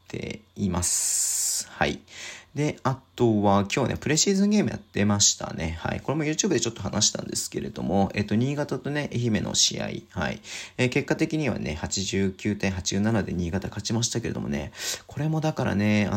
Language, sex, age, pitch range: Japanese, male, 40-59, 90-115 Hz